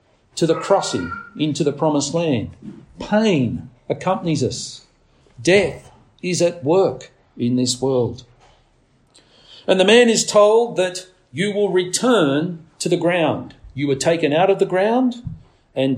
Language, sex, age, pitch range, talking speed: English, male, 50-69, 135-185 Hz, 140 wpm